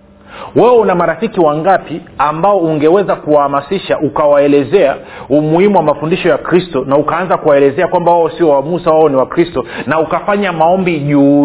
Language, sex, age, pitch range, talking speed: Swahili, male, 40-59, 150-200 Hz, 150 wpm